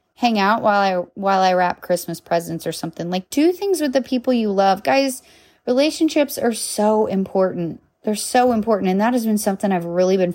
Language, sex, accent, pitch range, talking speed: English, female, American, 175-245 Hz, 205 wpm